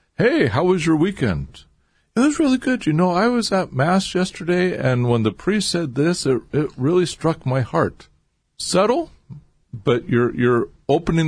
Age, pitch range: 50-69, 85-135 Hz